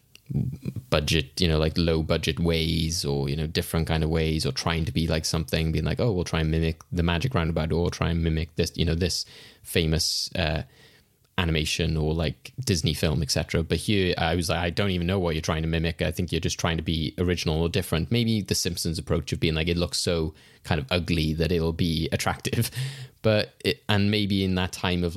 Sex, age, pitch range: male, 20-39, 85-105 Hz